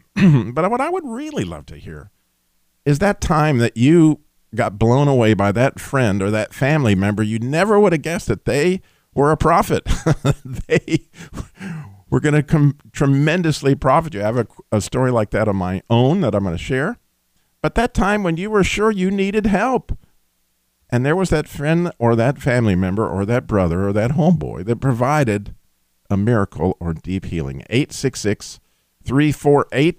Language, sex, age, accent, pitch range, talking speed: English, male, 50-69, American, 105-150 Hz, 180 wpm